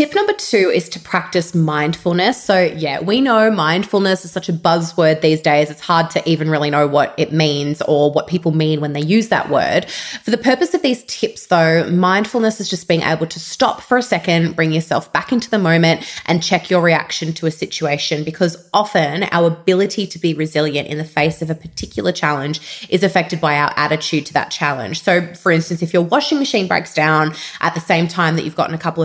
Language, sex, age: English, female, 20-39